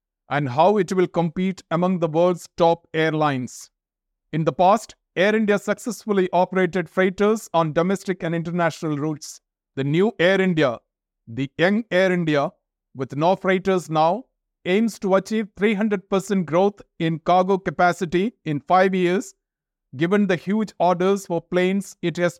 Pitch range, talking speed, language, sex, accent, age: 165-195 Hz, 145 wpm, English, male, Indian, 50-69